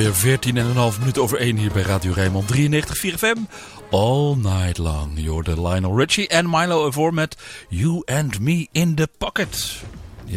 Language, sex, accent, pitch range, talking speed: English, male, Dutch, 105-150 Hz, 190 wpm